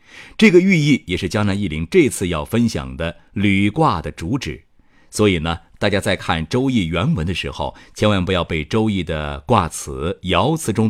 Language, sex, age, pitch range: Chinese, male, 50-69, 85-120 Hz